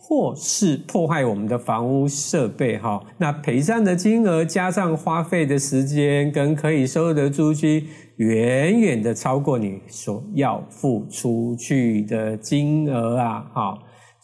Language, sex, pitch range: Chinese, male, 125-185 Hz